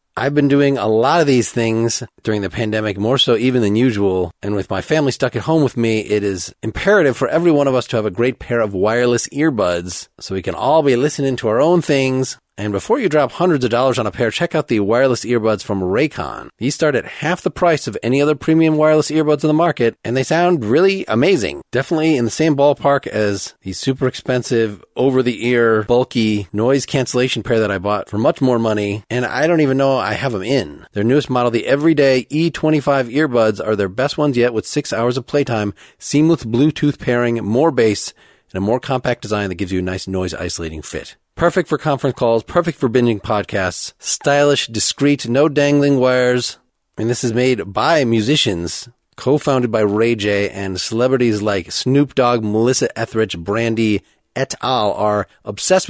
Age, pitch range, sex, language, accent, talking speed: 30-49, 105-140 Hz, male, English, American, 200 wpm